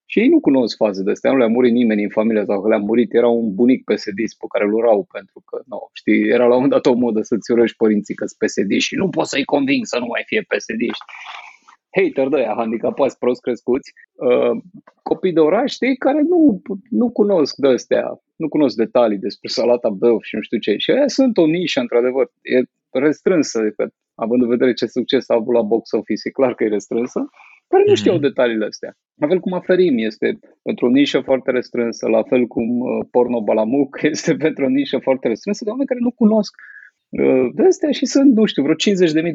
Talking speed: 200 wpm